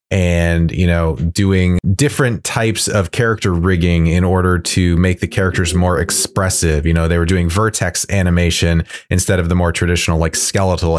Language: English